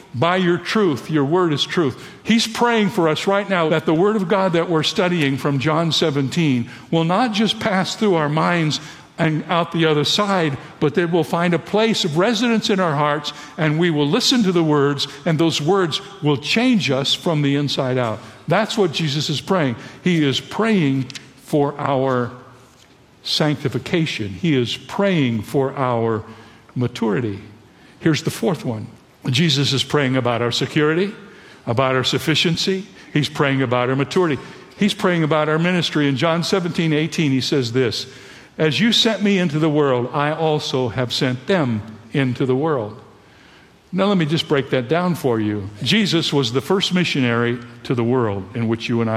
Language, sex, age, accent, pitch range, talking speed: English, male, 60-79, American, 125-170 Hz, 180 wpm